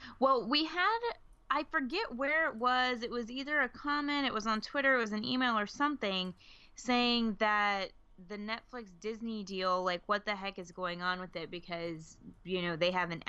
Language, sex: English, female